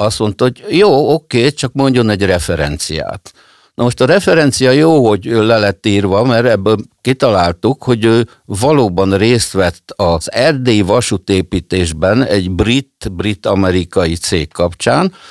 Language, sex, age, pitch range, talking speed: Hungarian, male, 60-79, 90-125 Hz, 130 wpm